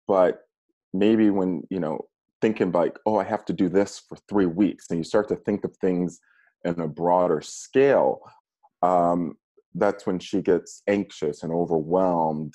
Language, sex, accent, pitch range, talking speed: English, male, American, 85-105 Hz, 165 wpm